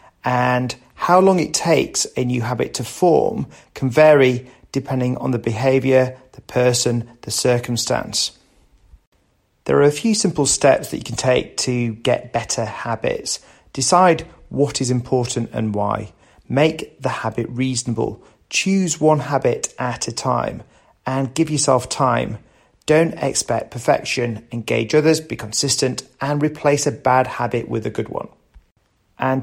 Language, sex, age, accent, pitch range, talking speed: English, male, 40-59, British, 120-140 Hz, 145 wpm